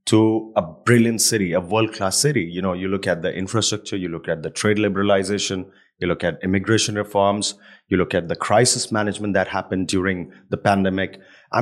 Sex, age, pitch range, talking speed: male, 30-49, 95-115 Hz, 190 wpm